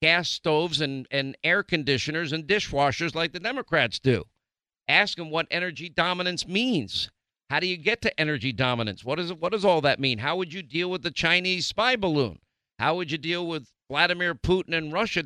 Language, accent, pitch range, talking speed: English, American, 150-180 Hz, 195 wpm